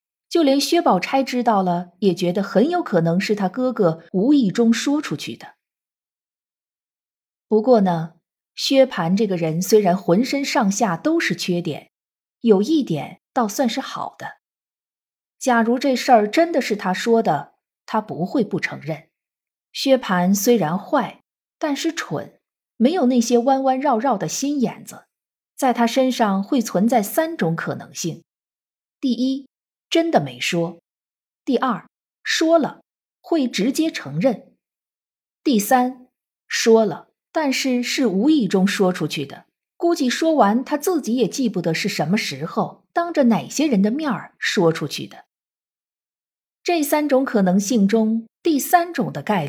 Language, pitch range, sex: Chinese, 185-270 Hz, female